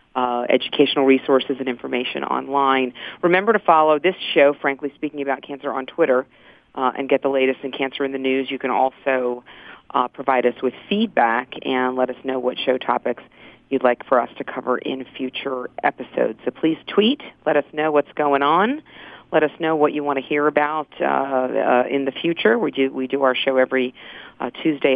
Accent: American